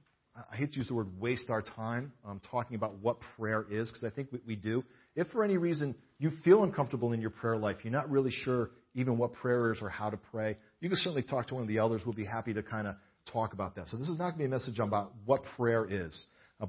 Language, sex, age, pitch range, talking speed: English, male, 40-59, 105-130 Hz, 275 wpm